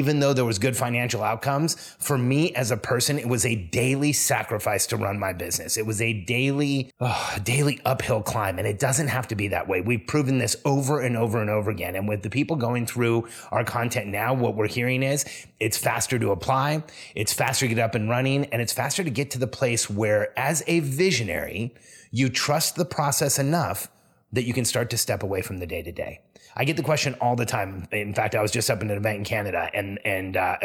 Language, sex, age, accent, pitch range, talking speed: English, male, 30-49, American, 105-130 Hz, 235 wpm